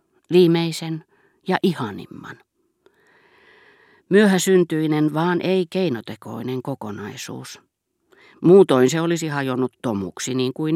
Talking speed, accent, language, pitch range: 80 wpm, native, Finnish, 120-160 Hz